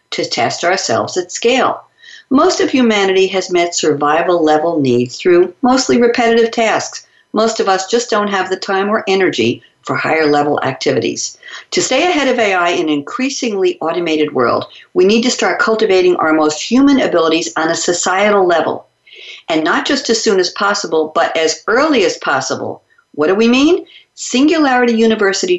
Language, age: English, 50-69